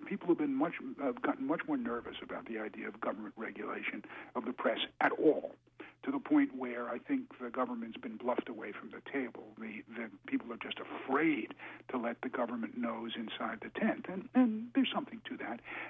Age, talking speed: 50-69, 205 wpm